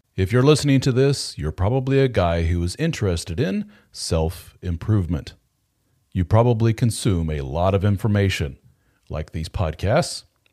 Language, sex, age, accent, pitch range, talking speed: English, male, 40-59, American, 90-120 Hz, 135 wpm